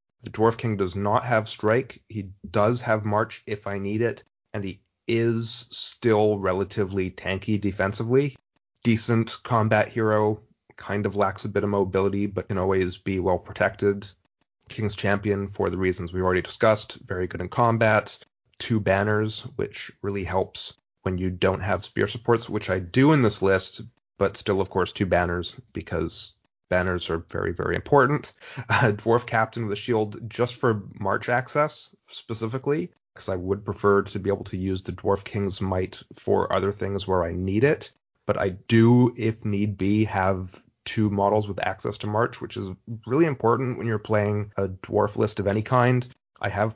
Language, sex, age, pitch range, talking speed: English, male, 30-49, 95-115 Hz, 175 wpm